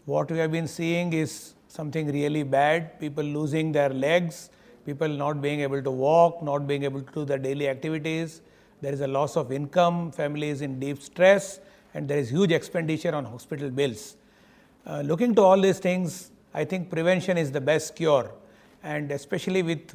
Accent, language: Indian, English